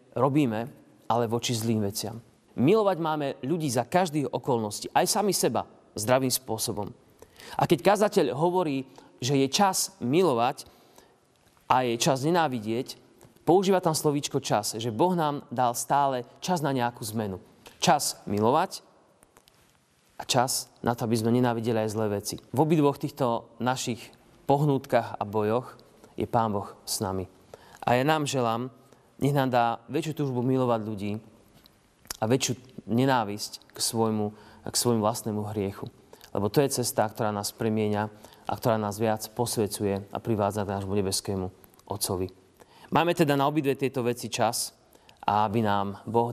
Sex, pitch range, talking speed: male, 105-130 Hz, 150 wpm